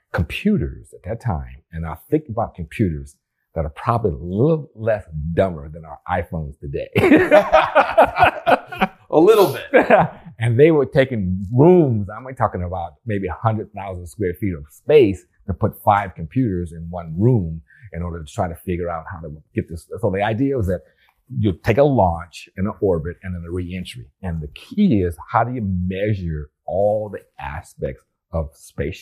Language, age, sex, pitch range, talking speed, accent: English, 40-59, male, 85-110 Hz, 175 wpm, American